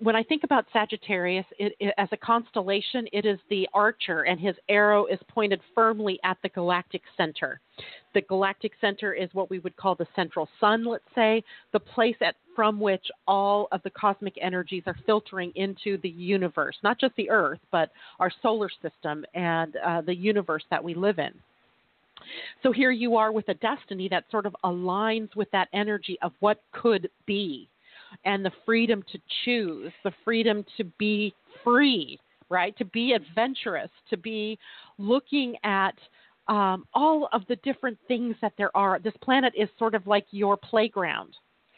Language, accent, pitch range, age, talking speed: English, American, 185-225 Hz, 40-59, 170 wpm